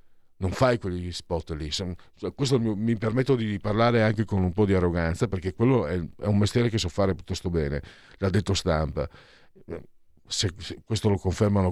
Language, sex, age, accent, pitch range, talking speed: Italian, male, 50-69, native, 90-130 Hz, 170 wpm